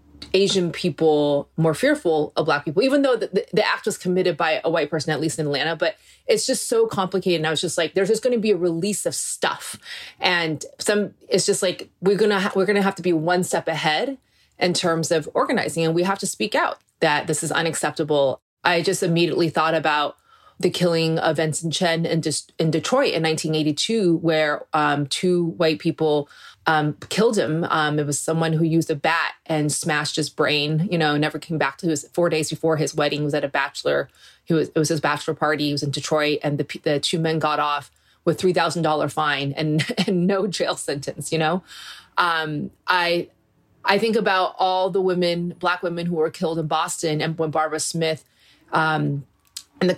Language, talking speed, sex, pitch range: English, 210 wpm, female, 150-180 Hz